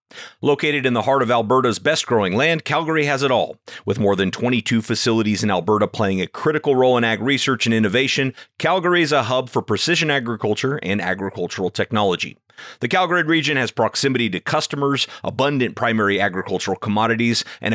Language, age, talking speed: English, 30-49, 170 wpm